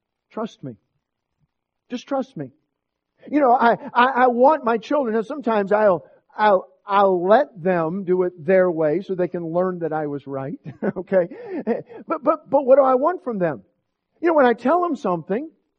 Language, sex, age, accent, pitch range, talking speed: English, male, 50-69, American, 175-240 Hz, 185 wpm